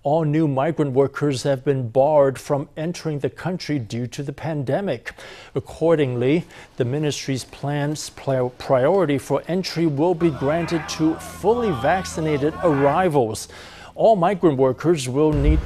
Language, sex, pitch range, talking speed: English, male, 140-165 Hz, 130 wpm